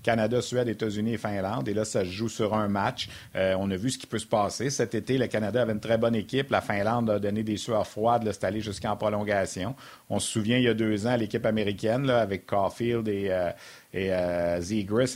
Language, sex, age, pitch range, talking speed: French, male, 50-69, 100-120 Hz, 240 wpm